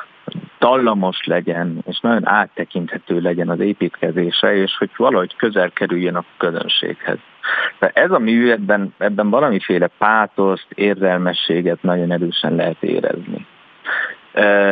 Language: Hungarian